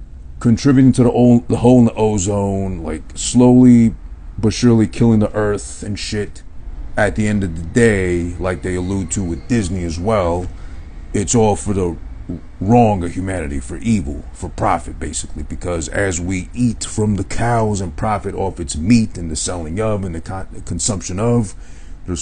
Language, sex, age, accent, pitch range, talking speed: English, male, 40-59, American, 80-110 Hz, 180 wpm